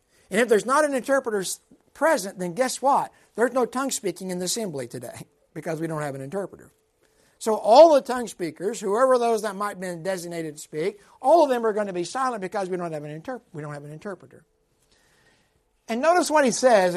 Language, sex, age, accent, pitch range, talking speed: English, male, 60-79, American, 175-235 Hz, 215 wpm